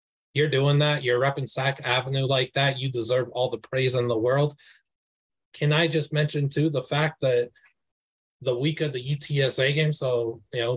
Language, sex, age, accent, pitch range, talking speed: English, male, 20-39, American, 120-150 Hz, 190 wpm